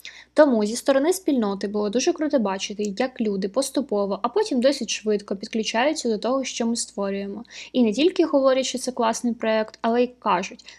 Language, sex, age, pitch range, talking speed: Ukrainian, female, 10-29, 215-265 Hz, 180 wpm